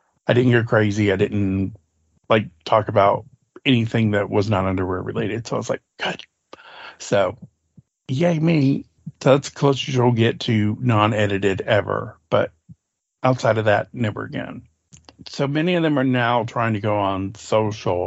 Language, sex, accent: English, male, American